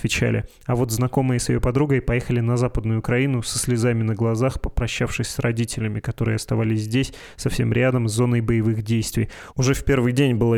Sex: male